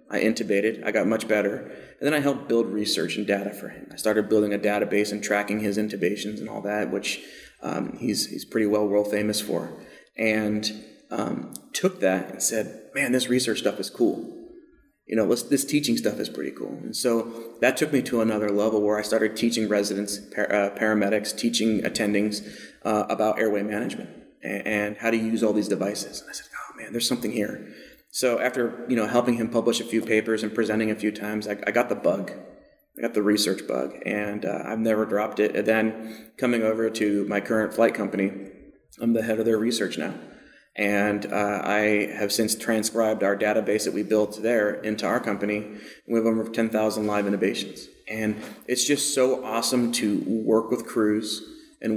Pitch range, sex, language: 105-115 Hz, male, English